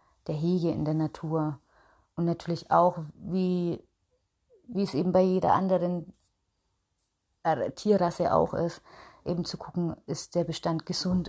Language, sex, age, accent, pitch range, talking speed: German, female, 30-49, German, 160-180 Hz, 135 wpm